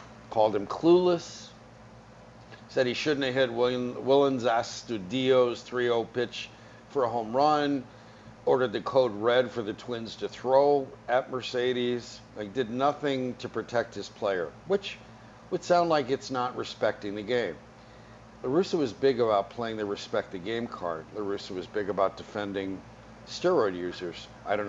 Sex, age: male, 50-69